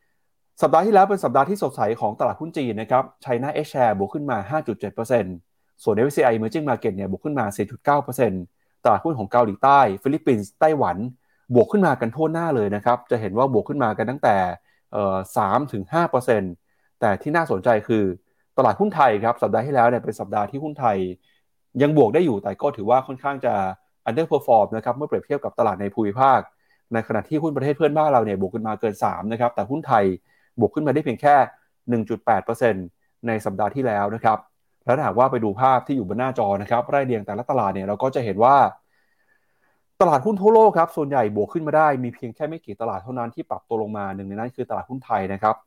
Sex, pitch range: male, 105-140 Hz